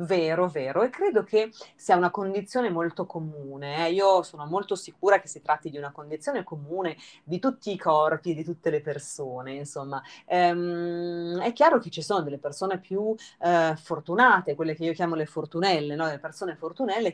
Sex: female